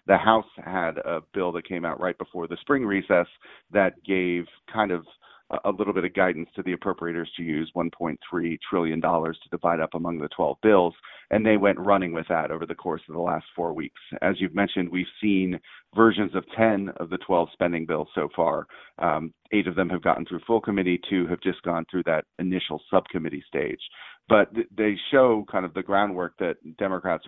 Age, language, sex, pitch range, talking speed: 40-59, English, male, 85-100 Hz, 200 wpm